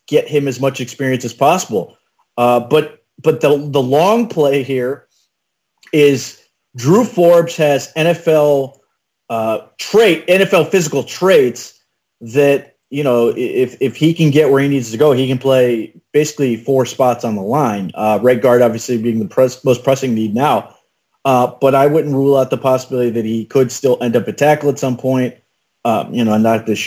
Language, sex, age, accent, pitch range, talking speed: English, male, 30-49, American, 115-140 Hz, 185 wpm